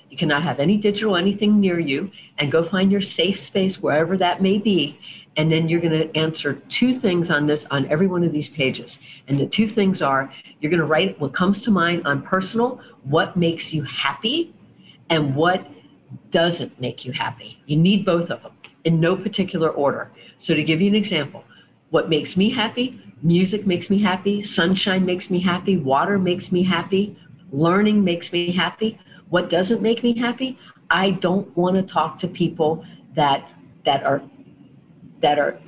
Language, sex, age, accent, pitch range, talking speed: English, female, 50-69, American, 155-195 Hz, 185 wpm